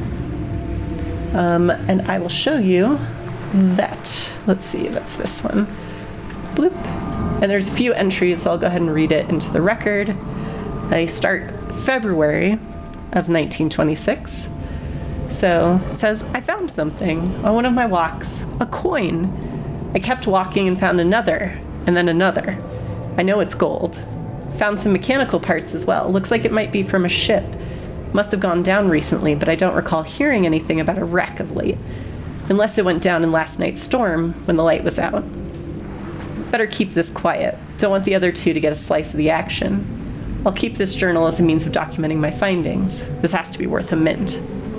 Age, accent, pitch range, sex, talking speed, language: 30-49, American, 160-200 Hz, female, 180 wpm, English